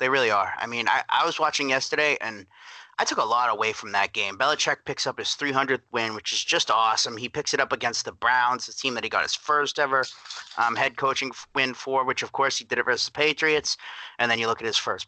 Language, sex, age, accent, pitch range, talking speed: English, male, 30-49, American, 120-150 Hz, 260 wpm